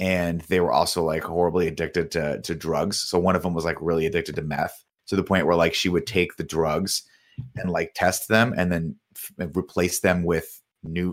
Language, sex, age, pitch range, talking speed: English, male, 30-49, 90-115 Hz, 220 wpm